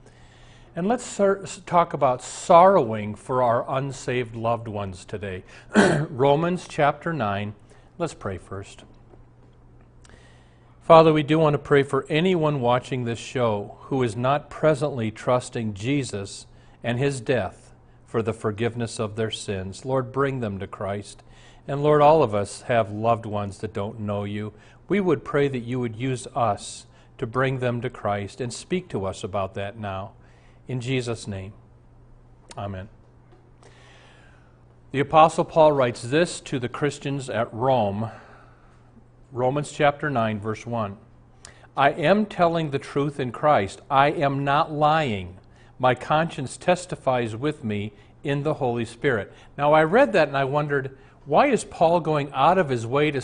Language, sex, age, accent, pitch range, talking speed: English, male, 40-59, American, 110-150 Hz, 150 wpm